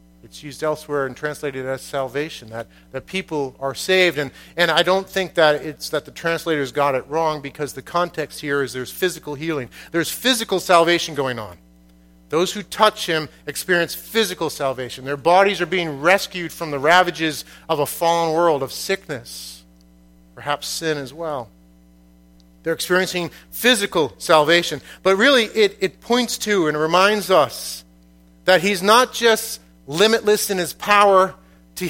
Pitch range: 135-205 Hz